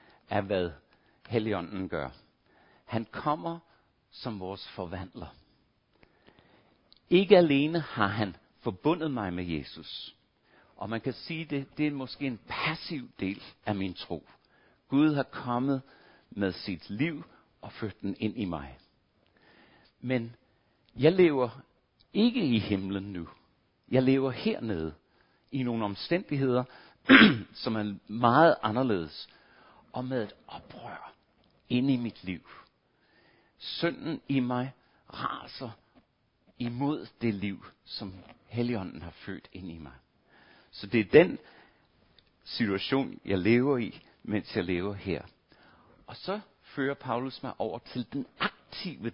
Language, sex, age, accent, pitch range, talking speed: Danish, male, 60-79, native, 95-135 Hz, 125 wpm